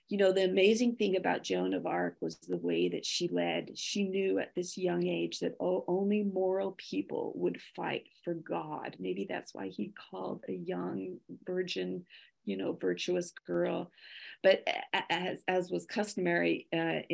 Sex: female